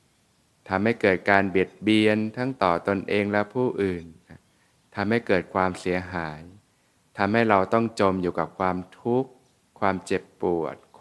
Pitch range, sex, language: 90-110 Hz, male, Thai